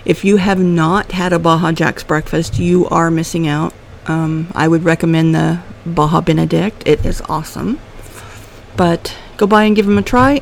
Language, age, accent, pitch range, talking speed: English, 50-69, American, 155-185 Hz, 180 wpm